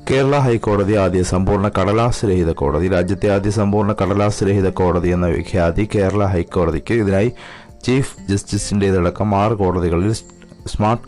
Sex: male